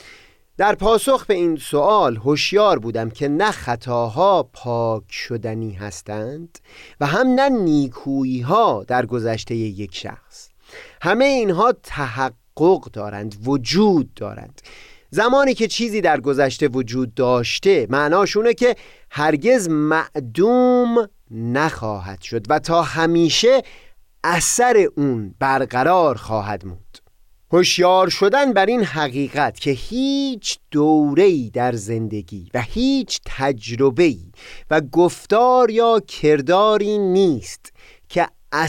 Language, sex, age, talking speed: Persian, male, 30-49, 105 wpm